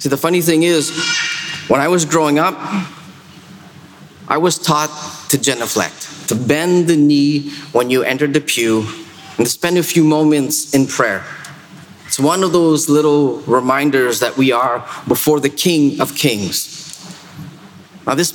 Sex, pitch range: male, 130-170 Hz